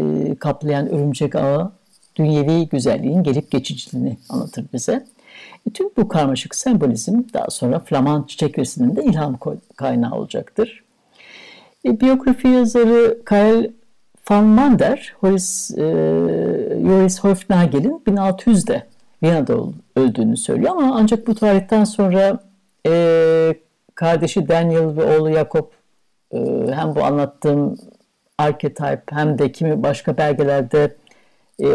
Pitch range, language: 150-230 Hz, Turkish